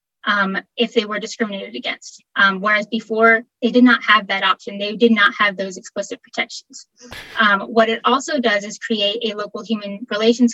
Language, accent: English, American